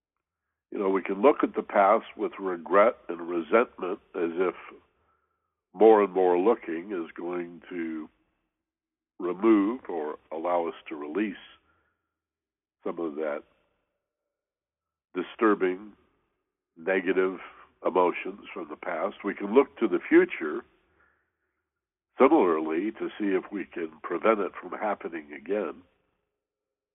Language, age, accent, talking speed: English, 60-79, American, 120 wpm